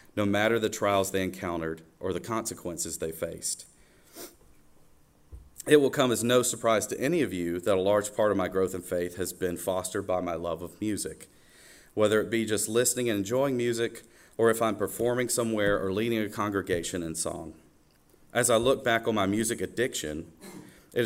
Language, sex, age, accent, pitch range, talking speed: English, male, 40-59, American, 95-115 Hz, 190 wpm